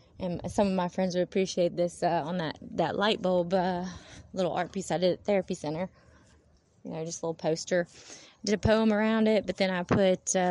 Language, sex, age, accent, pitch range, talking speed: English, female, 20-39, American, 155-190 Hz, 225 wpm